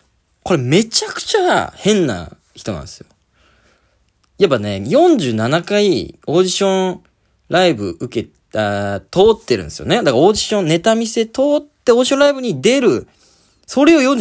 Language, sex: Japanese, male